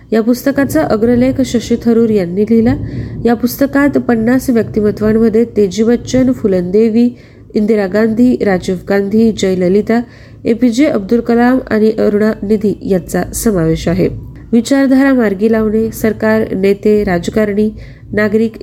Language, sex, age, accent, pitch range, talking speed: Marathi, female, 30-49, native, 195-240 Hz, 115 wpm